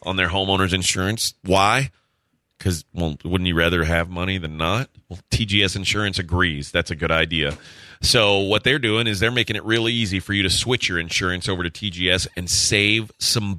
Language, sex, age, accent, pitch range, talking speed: English, male, 30-49, American, 90-115 Hz, 195 wpm